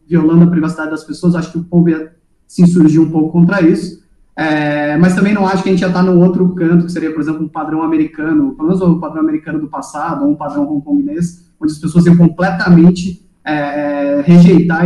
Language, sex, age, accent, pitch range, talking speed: Portuguese, male, 20-39, Brazilian, 160-190 Hz, 210 wpm